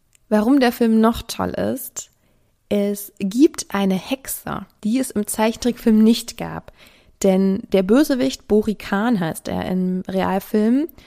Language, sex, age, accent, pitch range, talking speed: German, female, 20-39, German, 195-235 Hz, 130 wpm